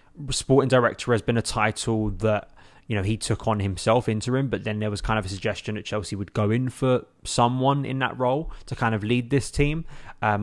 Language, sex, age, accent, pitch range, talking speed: English, male, 20-39, British, 105-120 Hz, 225 wpm